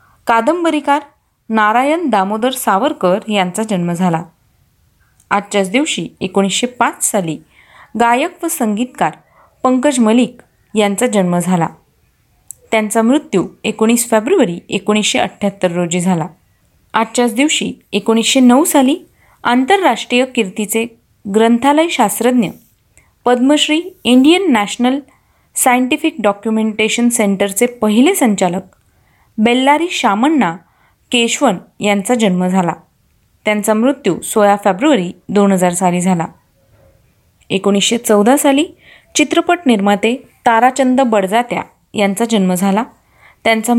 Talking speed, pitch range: 95 wpm, 200-255 Hz